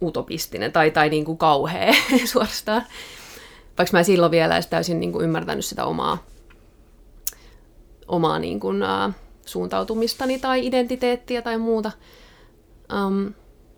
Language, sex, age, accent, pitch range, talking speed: Finnish, female, 20-39, native, 170-200 Hz, 120 wpm